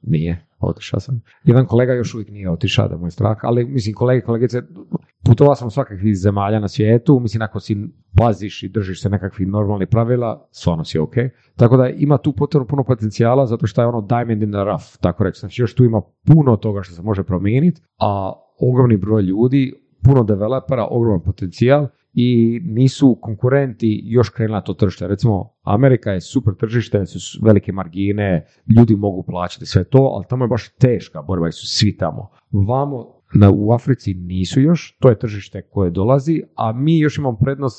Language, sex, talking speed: Croatian, male, 185 wpm